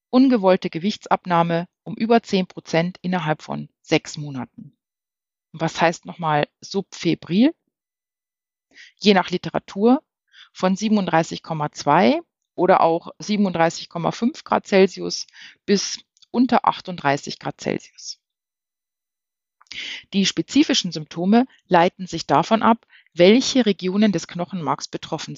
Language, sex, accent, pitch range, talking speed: German, female, German, 165-205 Hz, 95 wpm